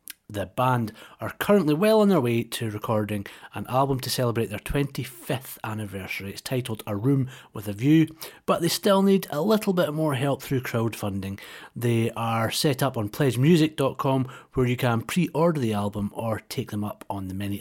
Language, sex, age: English, male, 40-59